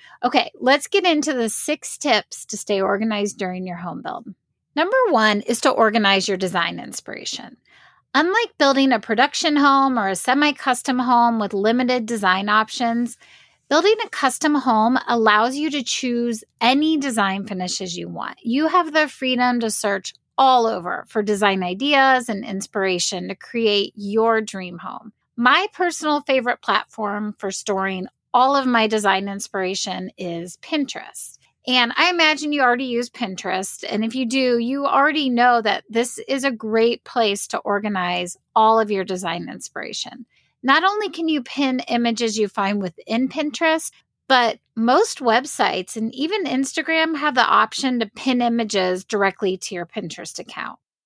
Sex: female